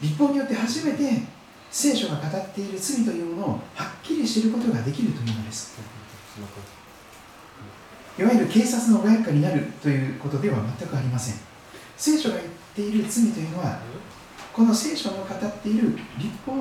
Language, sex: Japanese, male